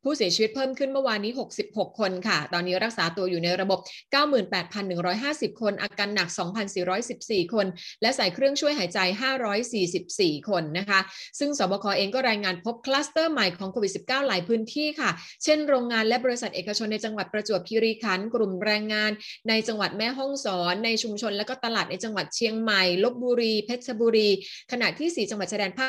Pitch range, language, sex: 195-255 Hz, Thai, female